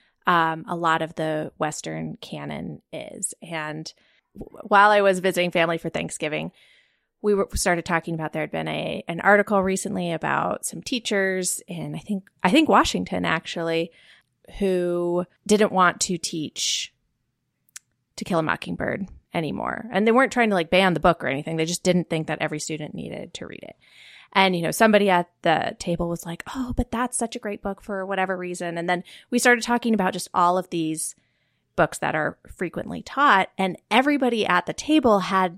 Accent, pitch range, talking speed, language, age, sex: American, 175-235 Hz, 185 wpm, English, 20-39, female